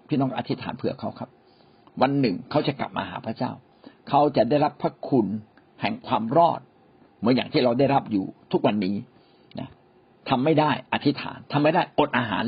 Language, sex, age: Thai, male, 60-79